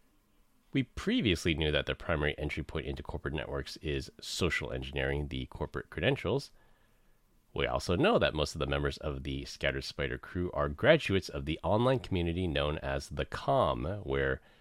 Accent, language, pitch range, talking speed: American, English, 70-110 Hz, 170 wpm